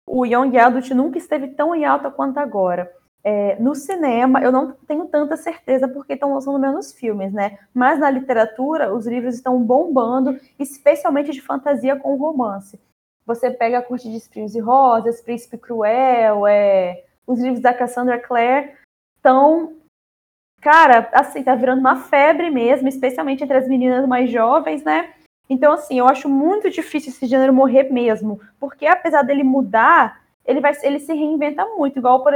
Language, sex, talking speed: Portuguese, female, 165 wpm